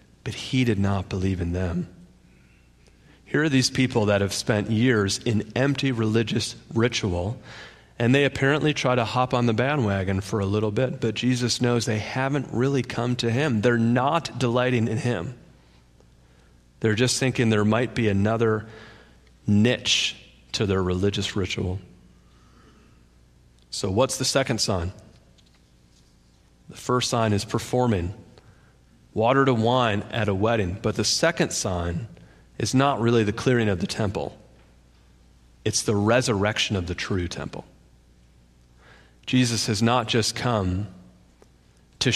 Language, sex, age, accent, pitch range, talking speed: English, male, 40-59, American, 95-125 Hz, 140 wpm